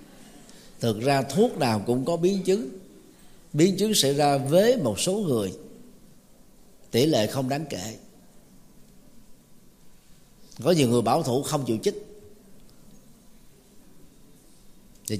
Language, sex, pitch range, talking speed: Vietnamese, male, 120-165 Hz, 120 wpm